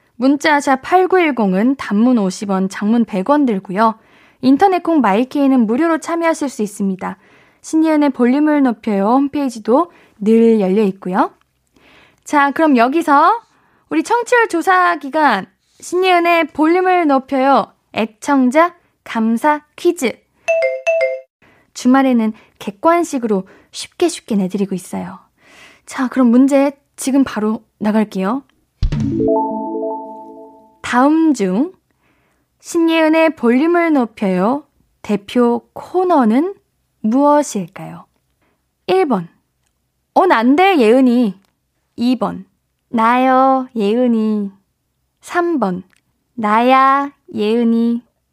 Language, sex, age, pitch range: Korean, female, 20-39, 220-305 Hz